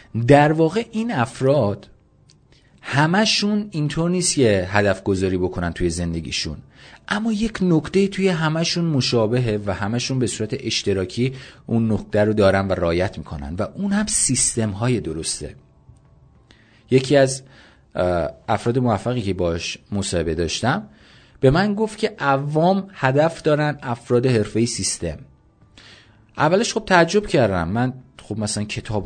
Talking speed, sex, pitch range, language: 130 wpm, male, 95-135 Hz, Persian